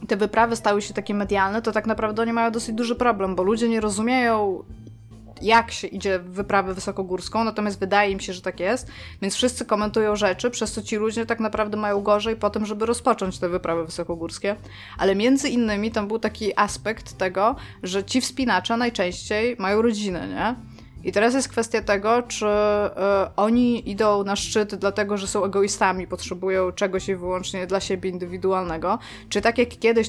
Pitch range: 190-220 Hz